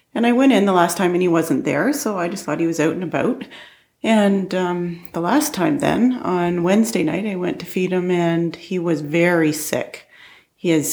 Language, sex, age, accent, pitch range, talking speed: English, female, 40-59, American, 150-175 Hz, 220 wpm